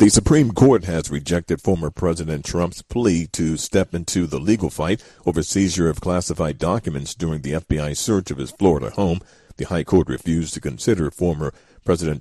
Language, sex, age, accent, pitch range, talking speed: English, male, 50-69, American, 80-95 Hz, 175 wpm